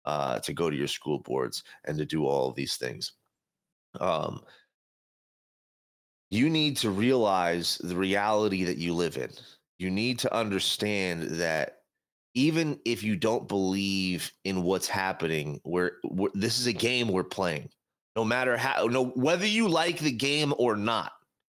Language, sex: English, male